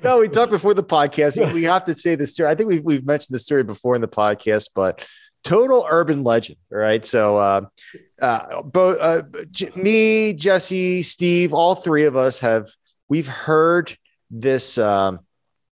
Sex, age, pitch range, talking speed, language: male, 30-49, 105-160 Hz, 170 wpm, English